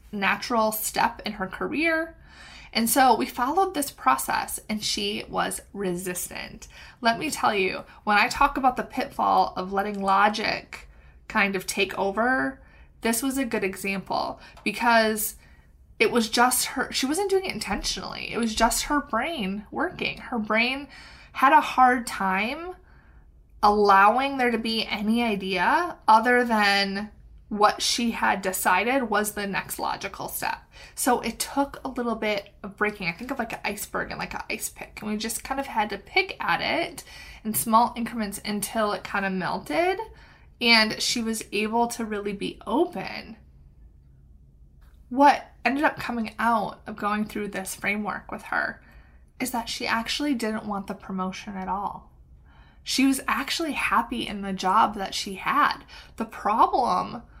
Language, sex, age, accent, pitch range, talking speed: English, female, 20-39, American, 200-245 Hz, 160 wpm